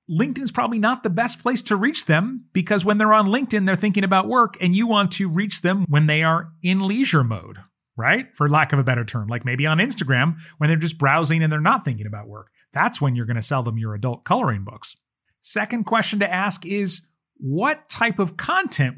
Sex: male